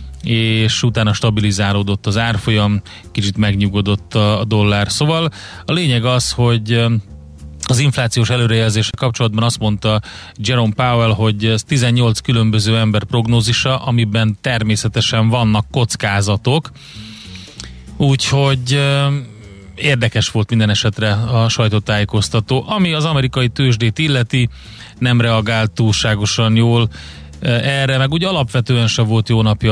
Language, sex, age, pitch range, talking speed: Hungarian, male, 30-49, 105-120 Hz, 110 wpm